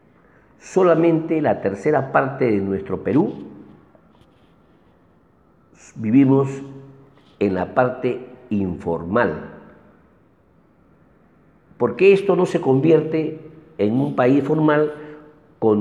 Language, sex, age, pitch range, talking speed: Spanish, male, 50-69, 125-155 Hz, 85 wpm